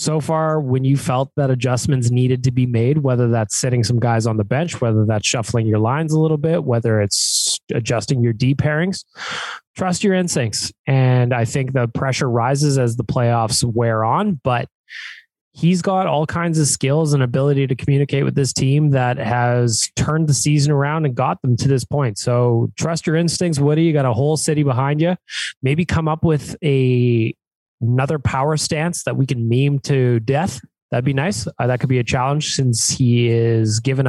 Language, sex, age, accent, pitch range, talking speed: English, male, 20-39, American, 120-155 Hz, 195 wpm